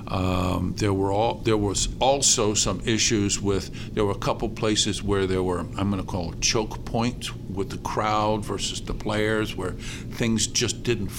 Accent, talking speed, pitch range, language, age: American, 180 wpm, 95-115 Hz, English, 50-69